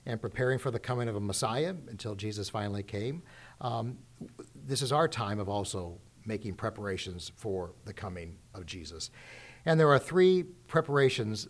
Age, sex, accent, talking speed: 50-69, male, American, 160 wpm